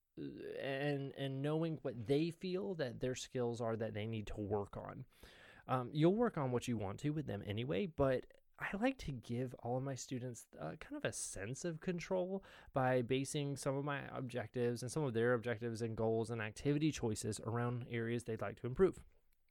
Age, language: 20-39, English